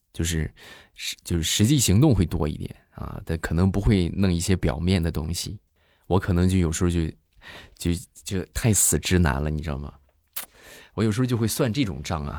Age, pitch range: 20-39, 80-100 Hz